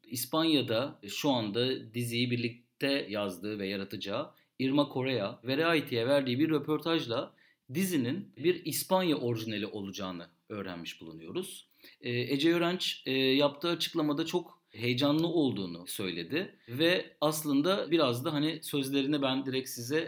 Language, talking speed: Turkish, 115 wpm